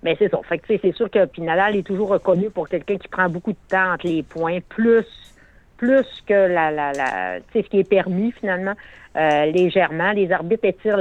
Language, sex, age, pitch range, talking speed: French, female, 60-79, 160-195 Hz, 205 wpm